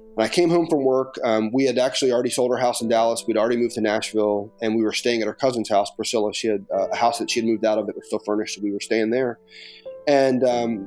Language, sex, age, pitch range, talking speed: English, male, 30-49, 110-135 Hz, 285 wpm